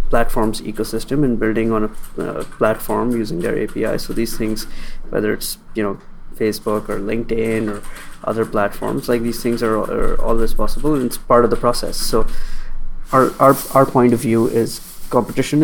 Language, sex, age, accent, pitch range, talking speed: English, male, 20-39, Indian, 110-125 Hz, 175 wpm